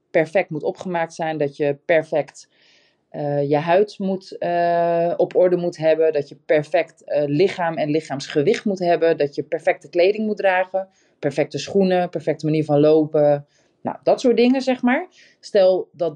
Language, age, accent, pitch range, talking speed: Dutch, 20-39, Dutch, 145-175 Hz, 165 wpm